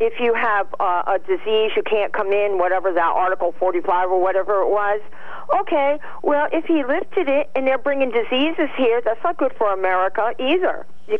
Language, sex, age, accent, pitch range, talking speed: English, female, 50-69, American, 215-275 Hz, 195 wpm